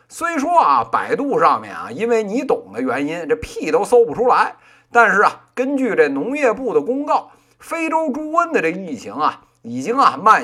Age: 50-69